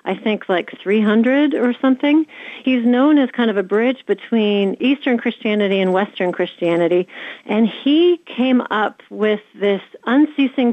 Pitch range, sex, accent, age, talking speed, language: 195-250 Hz, female, American, 40-59, 145 wpm, English